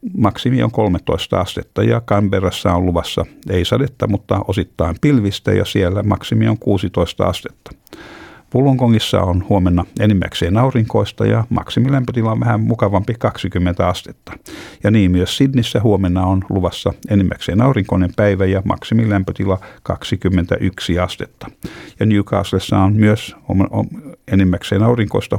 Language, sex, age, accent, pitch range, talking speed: Finnish, male, 60-79, native, 95-115 Hz, 120 wpm